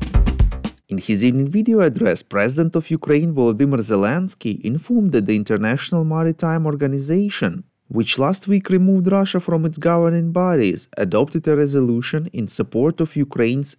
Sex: male